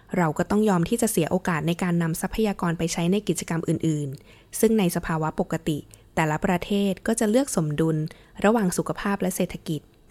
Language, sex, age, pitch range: Thai, female, 20-39, 160-205 Hz